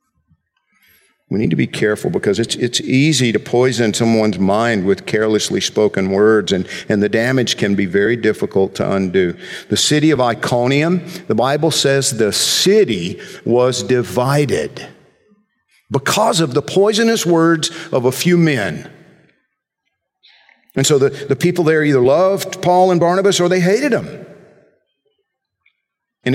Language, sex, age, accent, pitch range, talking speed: English, male, 50-69, American, 115-155 Hz, 145 wpm